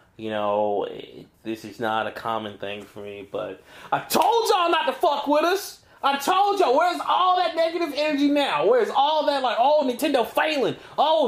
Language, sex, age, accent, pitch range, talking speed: English, male, 30-49, American, 230-335 Hz, 195 wpm